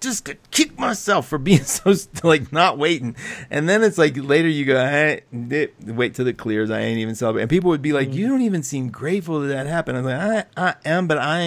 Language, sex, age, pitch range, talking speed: English, male, 50-69, 120-155 Hz, 230 wpm